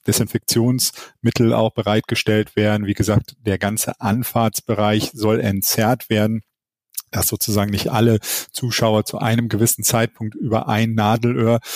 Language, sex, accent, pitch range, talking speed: German, male, German, 105-120 Hz, 120 wpm